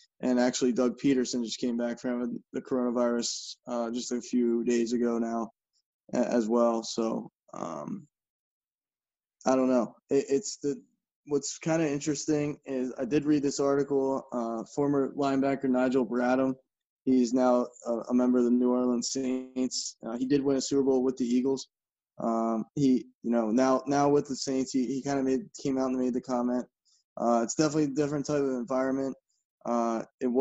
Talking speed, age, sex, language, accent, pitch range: 180 wpm, 20-39, male, English, American, 120-140 Hz